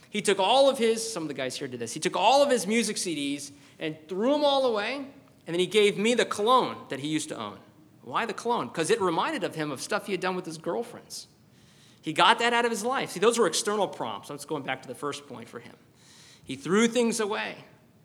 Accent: American